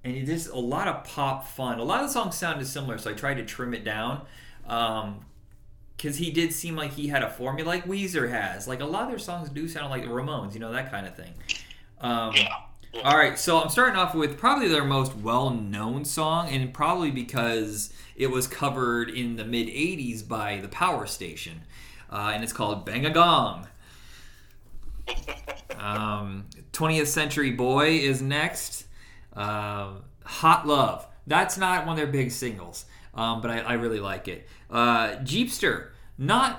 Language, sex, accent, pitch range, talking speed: English, male, American, 110-150 Hz, 180 wpm